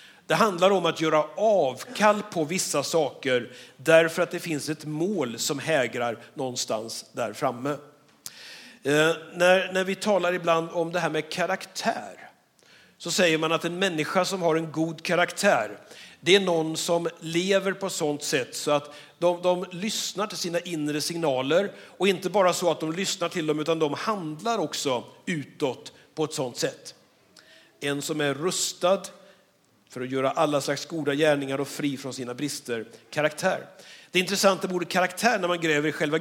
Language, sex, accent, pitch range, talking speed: Swedish, male, native, 150-185 Hz, 170 wpm